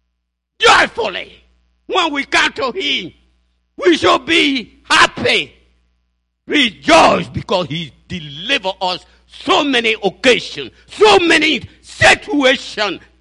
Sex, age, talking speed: male, 60-79, 95 wpm